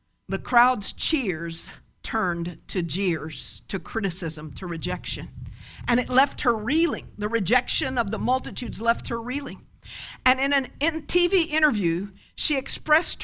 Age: 50-69